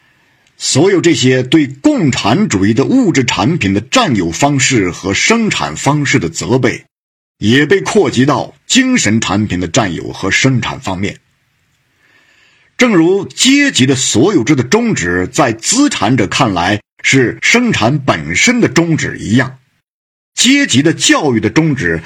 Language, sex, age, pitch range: Chinese, male, 50-69, 115-170 Hz